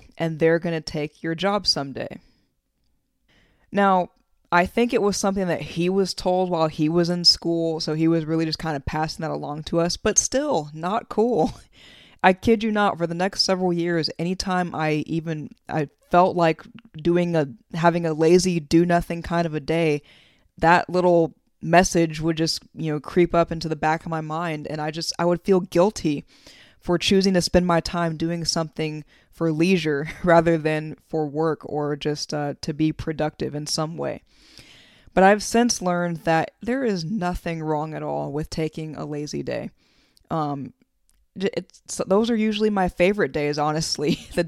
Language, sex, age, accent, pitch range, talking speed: English, female, 20-39, American, 155-185 Hz, 180 wpm